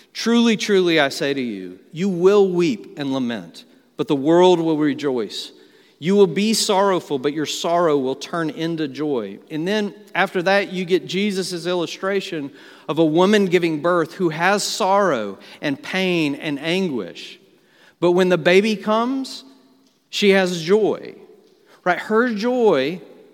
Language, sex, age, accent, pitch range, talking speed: English, male, 40-59, American, 170-210 Hz, 150 wpm